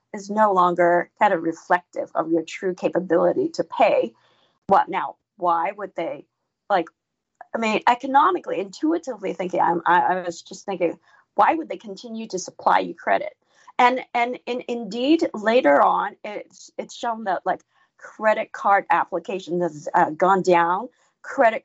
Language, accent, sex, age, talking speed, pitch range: English, American, female, 30-49, 150 wpm, 175-245 Hz